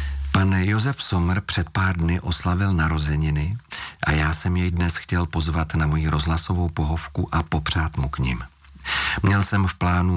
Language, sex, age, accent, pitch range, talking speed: Czech, male, 40-59, native, 80-95 Hz, 165 wpm